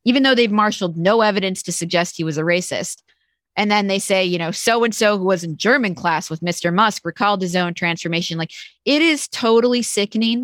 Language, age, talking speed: English, 30-49, 205 wpm